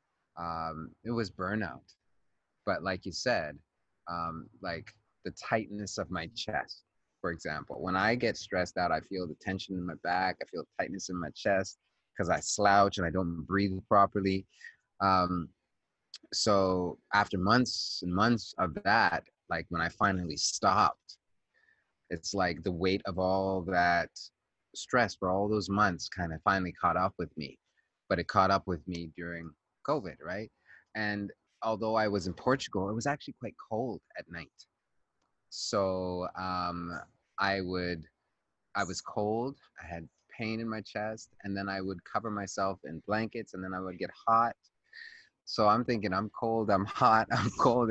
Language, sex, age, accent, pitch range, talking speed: English, male, 30-49, American, 90-105 Hz, 165 wpm